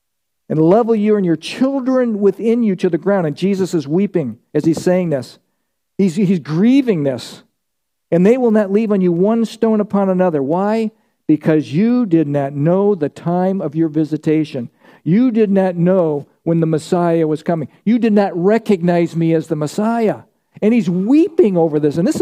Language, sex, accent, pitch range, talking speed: English, male, American, 165-215 Hz, 185 wpm